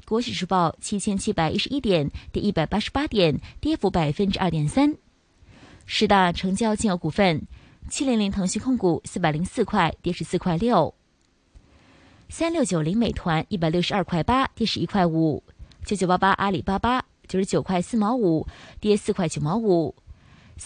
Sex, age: female, 20-39